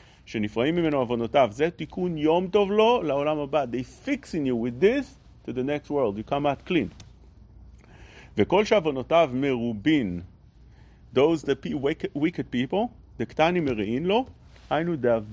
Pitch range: 140-190 Hz